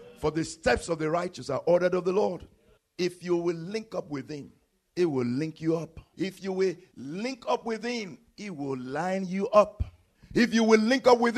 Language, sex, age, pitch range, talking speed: English, male, 50-69, 110-165 Hz, 215 wpm